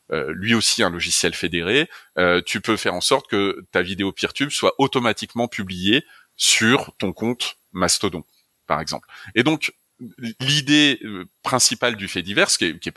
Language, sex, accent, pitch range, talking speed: French, male, French, 95-115 Hz, 155 wpm